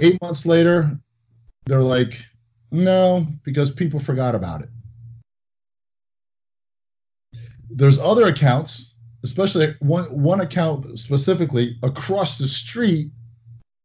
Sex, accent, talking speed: male, American, 95 wpm